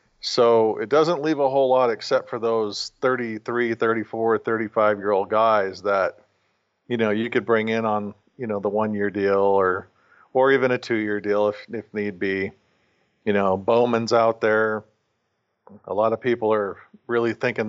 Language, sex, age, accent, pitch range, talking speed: English, male, 40-59, American, 105-115 Hz, 165 wpm